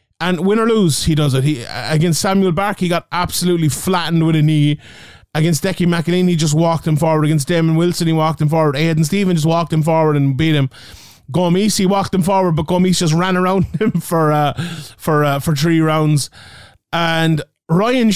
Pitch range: 145-180 Hz